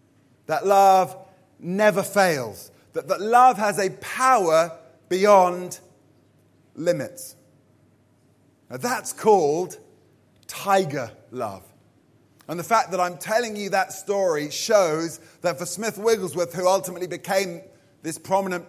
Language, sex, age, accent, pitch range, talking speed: English, male, 30-49, British, 150-205 Hz, 110 wpm